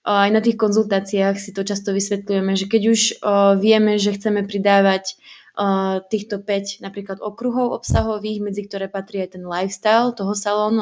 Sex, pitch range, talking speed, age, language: female, 185-210 Hz, 155 wpm, 20-39, Slovak